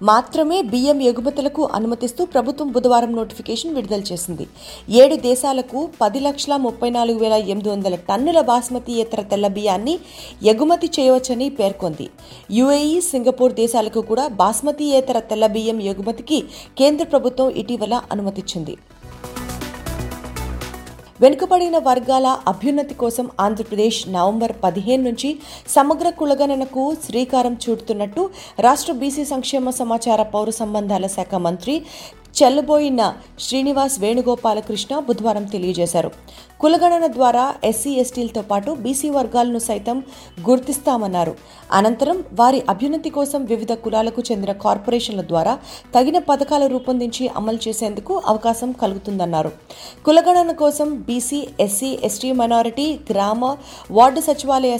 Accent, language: native, Telugu